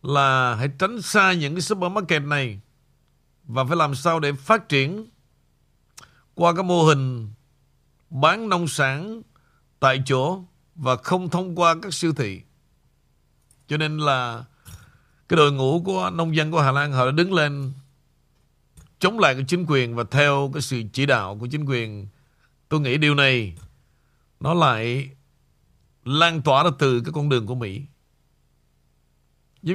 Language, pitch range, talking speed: Vietnamese, 130-165 Hz, 155 wpm